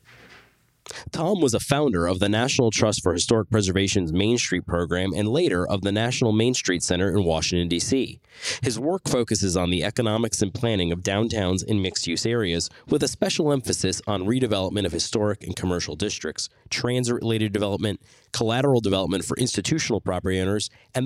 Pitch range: 100-125 Hz